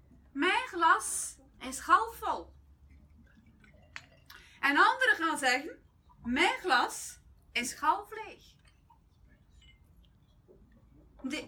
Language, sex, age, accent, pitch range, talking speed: Dutch, female, 30-49, Dutch, 240-335 Hz, 70 wpm